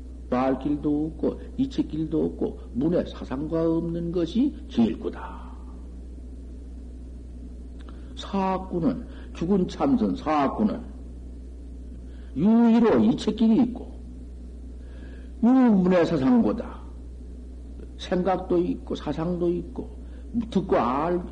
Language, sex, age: Korean, male, 60-79